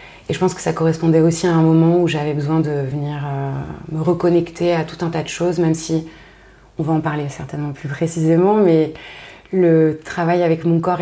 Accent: French